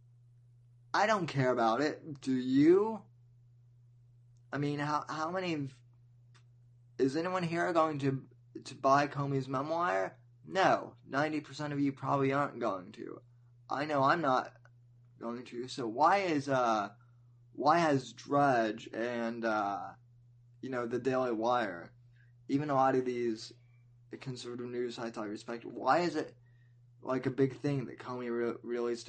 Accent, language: American, English